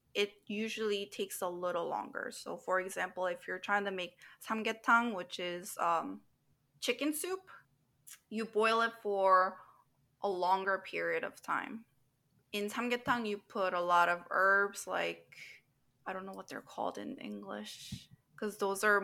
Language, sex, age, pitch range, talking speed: English, female, 20-39, 175-230 Hz, 155 wpm